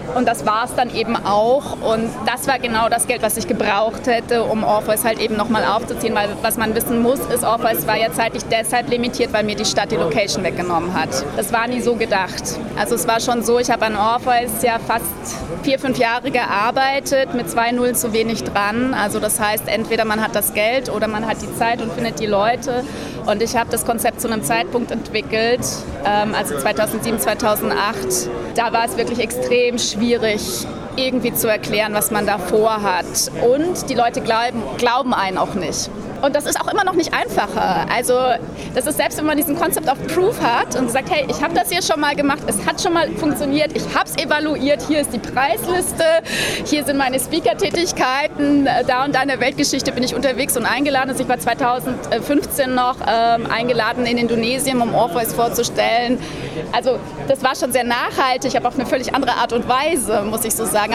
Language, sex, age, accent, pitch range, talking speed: German, female, 20-39, German, 225-265 Hz, 205 wpm